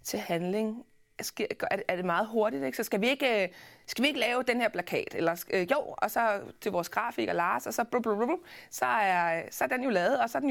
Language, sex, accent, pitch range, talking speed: Danish, female, native, 195-265 Hz, 245 wpm